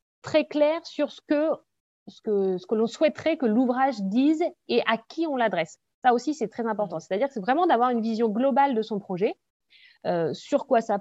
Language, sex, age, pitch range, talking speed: French, female, 30-49, 190-275 Hz, 215 wpm